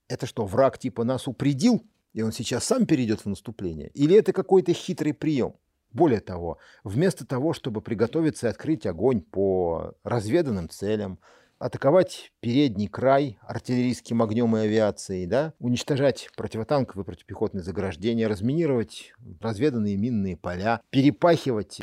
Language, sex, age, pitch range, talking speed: Russian, male, 50-69, 105-140 Hz, 125 wpm